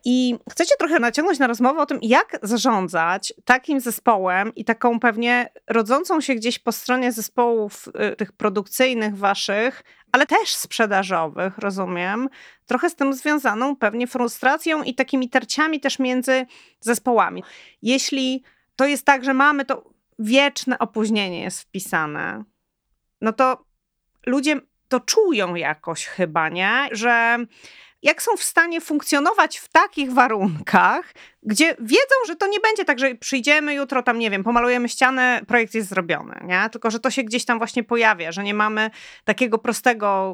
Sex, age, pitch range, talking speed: female, 30-49, 215-265 Hz, 150 wpm